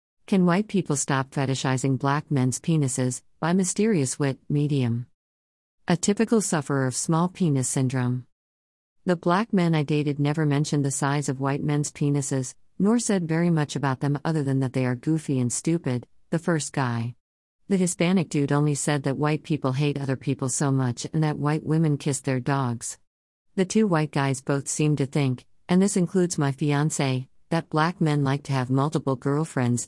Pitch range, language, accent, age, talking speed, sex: 135-155 Hz, English, American, 50-69, 180 wpm, female